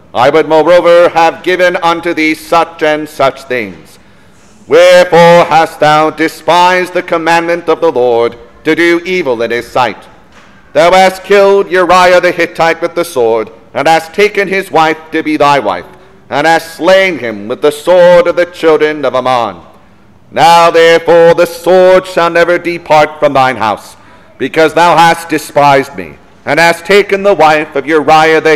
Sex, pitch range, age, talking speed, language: male, 150-175 Hz, 50-69, 165 wpm, English